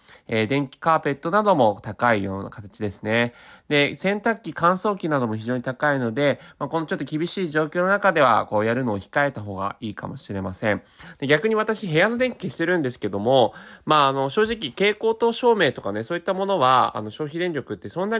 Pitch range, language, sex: 110-160 Hz, Japanese, male